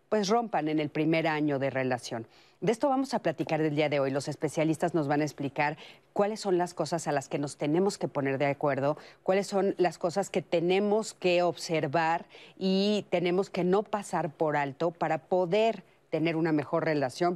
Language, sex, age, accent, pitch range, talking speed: Spanish, female, 40-59, Mexican, 150-190 Hz, 195 wpm